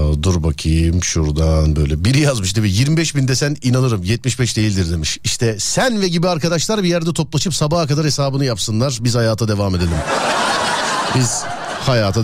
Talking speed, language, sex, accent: 150 wpm, Turkish, male, native